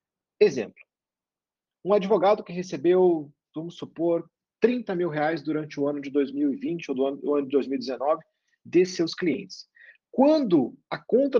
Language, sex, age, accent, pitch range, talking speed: Portuguese, male, 40-59, Brazilian, 135-200 Hz, 140 wpm